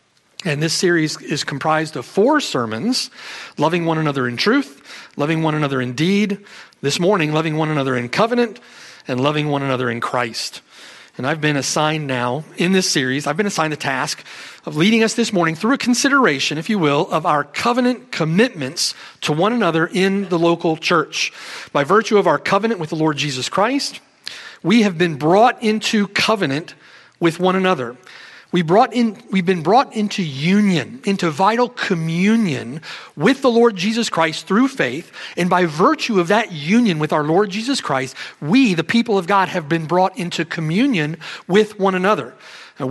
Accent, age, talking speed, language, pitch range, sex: American, 40-59, 180 wpm, English, 155-215 Hz, male